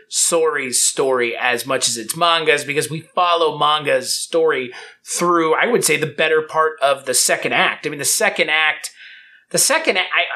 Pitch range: 145-175 Hz